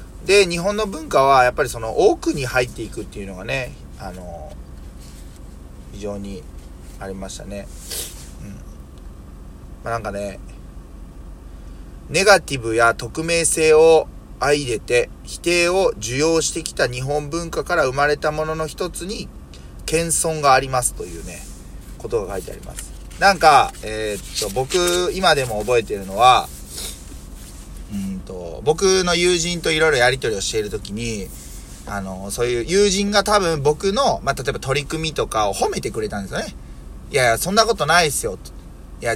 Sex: male